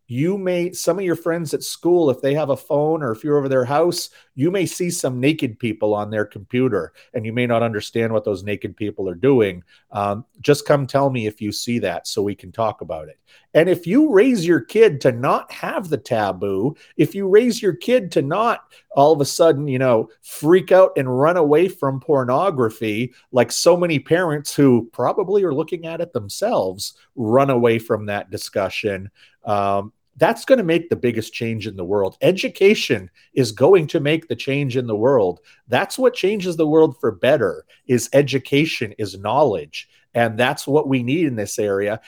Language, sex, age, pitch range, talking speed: English, male, 40-59, 115-170 Hz, 200 wpm